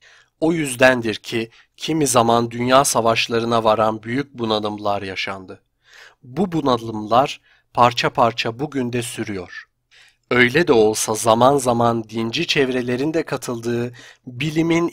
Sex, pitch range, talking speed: male, 115-145 Hz, 110 wpm